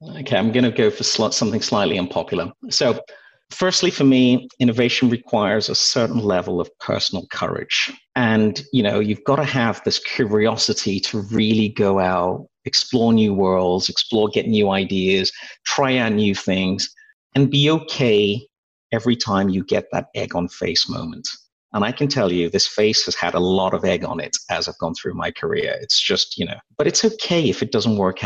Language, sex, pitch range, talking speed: English, male, 105-140 Hz, 190 wpm